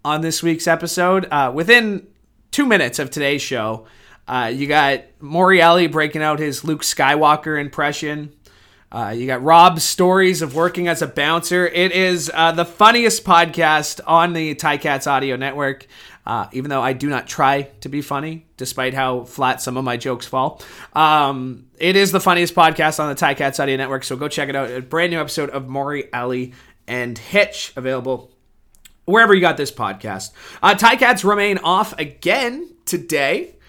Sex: male